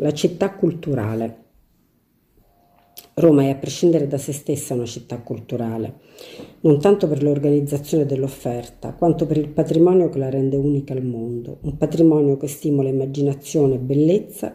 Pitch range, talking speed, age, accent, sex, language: 140-165 Hz, 140 wpm, 50-69, native, female, Italian